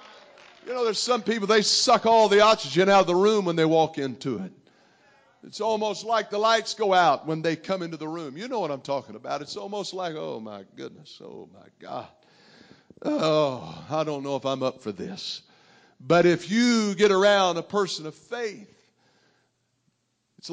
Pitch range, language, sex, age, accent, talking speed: 180-235 Hz, English, male, 50-69, American, 195 wpm